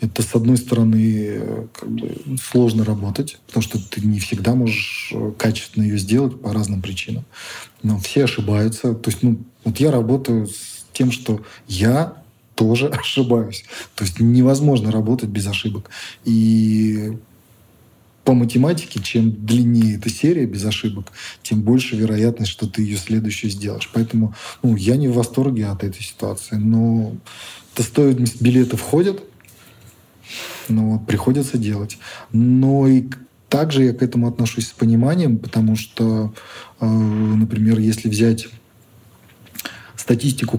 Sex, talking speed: male, 130 wpm